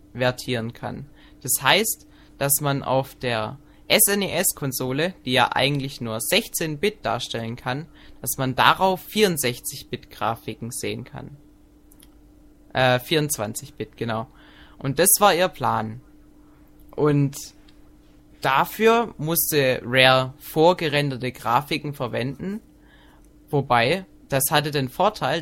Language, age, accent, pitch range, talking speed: German, 20-39, German, 120-150 Hz, 100 wpm